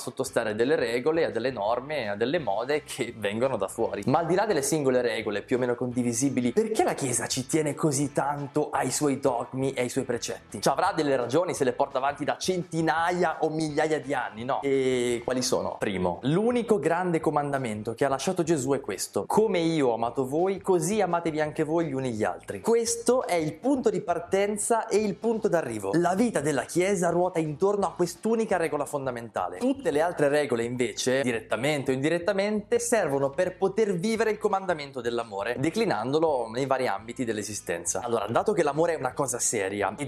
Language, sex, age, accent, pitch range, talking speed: Italian, male, 20-39, native, 125-175 Hz, 195 wpm